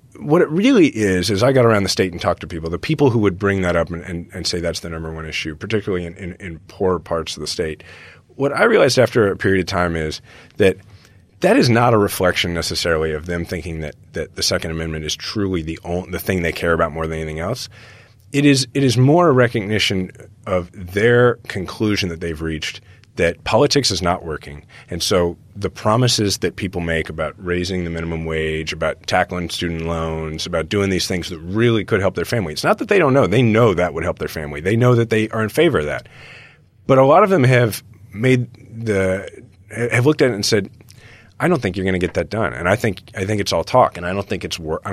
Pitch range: 90-115 Hz